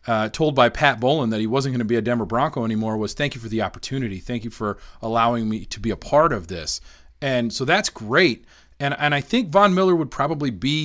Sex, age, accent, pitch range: male, 30-49, American, 110-135 Hz